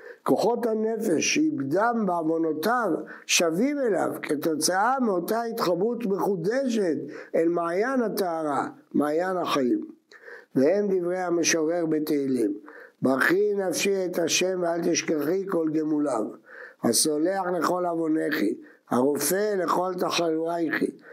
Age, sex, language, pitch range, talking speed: 60-79, male, English, 165-240 Hz, 95 wpm